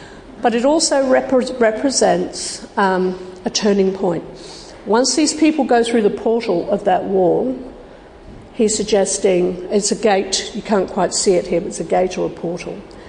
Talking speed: 165 wpm